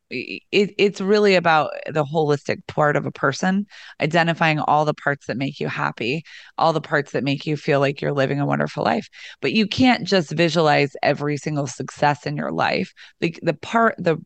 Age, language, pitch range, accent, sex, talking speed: 30-49, English, 150-190 Hz, American, female, 195 wpm